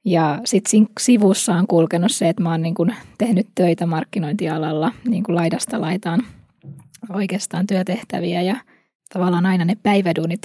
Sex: female